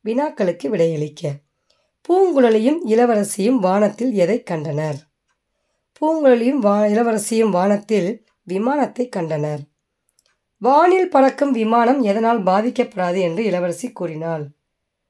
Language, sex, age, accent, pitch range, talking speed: Tamil, female, 20-39, native, 175-255 Hz, 85 wpm